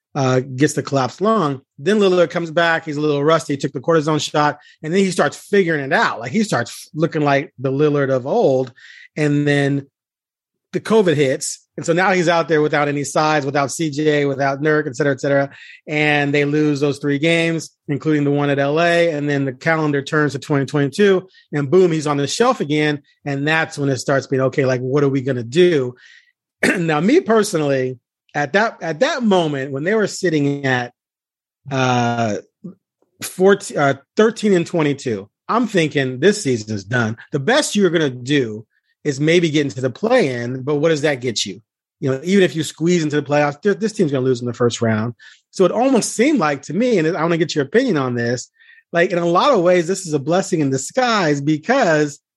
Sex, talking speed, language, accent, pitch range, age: male, 210 wpm, English, American, 140-175 Hz, 30-49